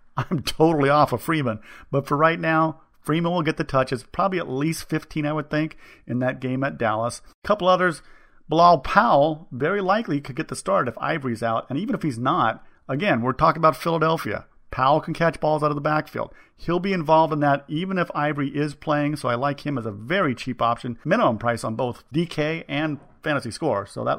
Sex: male